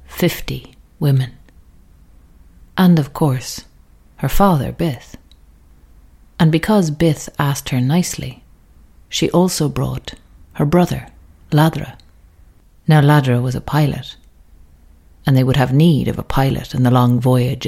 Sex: female